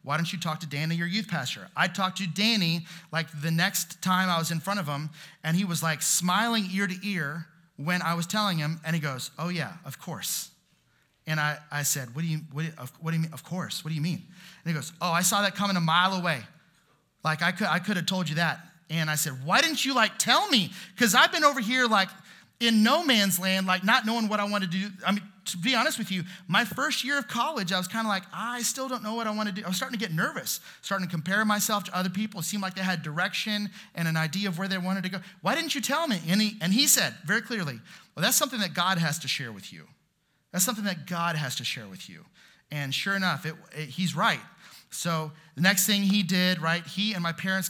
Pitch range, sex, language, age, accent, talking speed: 160-195 Hz, male, English, 30-49, American, 265 wpm